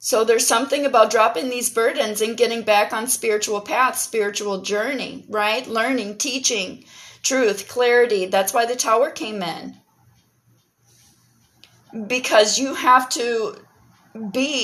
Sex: female